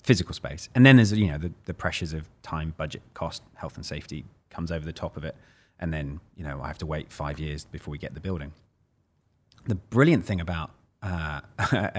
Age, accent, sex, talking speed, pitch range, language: 30-49, British, male, 215 wpm, 85-105 Hz, English